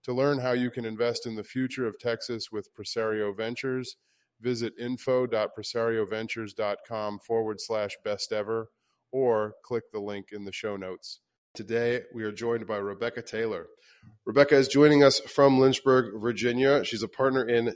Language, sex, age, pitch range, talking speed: English, male, 30-49, 105-130 Hz, 155 wpm